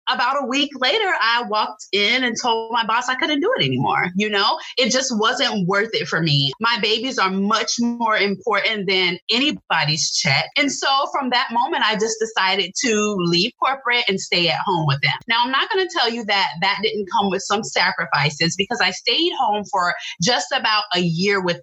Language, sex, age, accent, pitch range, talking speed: English, female, 30-49, American, 190-255 Hz, 210 wpm